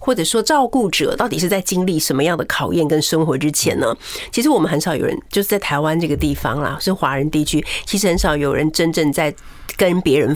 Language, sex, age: Chinese, female, 50-69